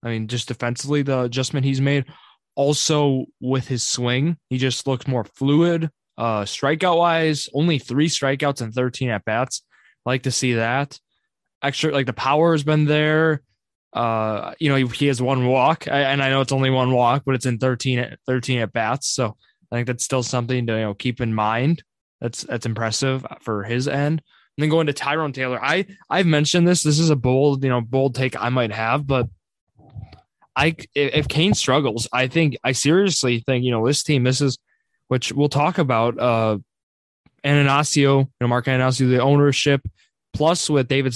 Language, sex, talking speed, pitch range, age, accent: English, male, 190 wpm, 120-145 Hz, 20-39, American